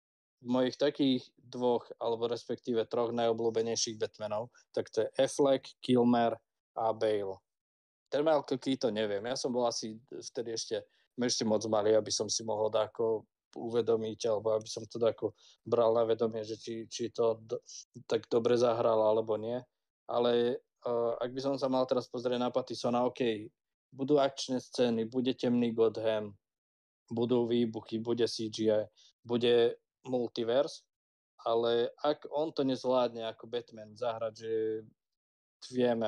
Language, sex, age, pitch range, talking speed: Slovak, male, 20-39, 110-125 Hz, 145 wpm